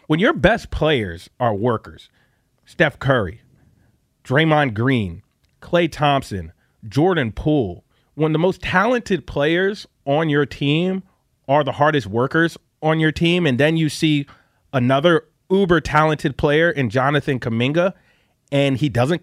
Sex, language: male, English